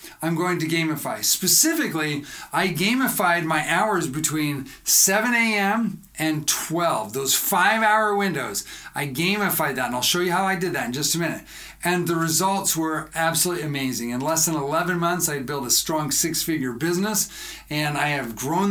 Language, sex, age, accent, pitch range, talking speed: English, male, 30-49, American, 160-205 Hz, 170 wpm